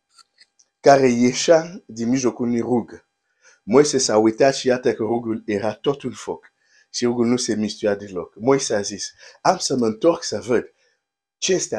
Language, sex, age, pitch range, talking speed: Romanian, male, 50-69, 105-135 Hz, 135 wpm